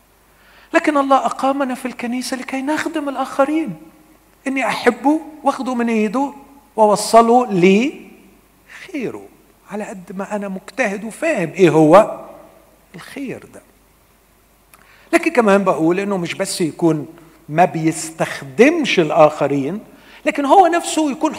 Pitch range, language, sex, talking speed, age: 205-310 Hz, Arabic, male, 110 wpm, 50-69